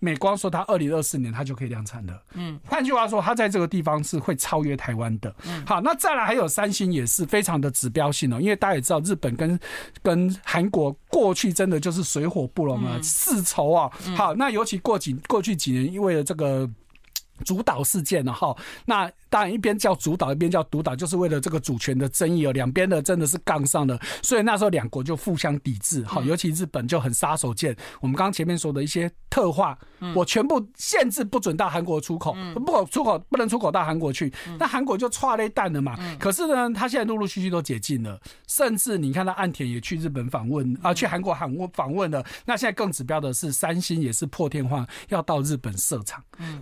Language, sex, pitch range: Chinese, male, 140-200 Hz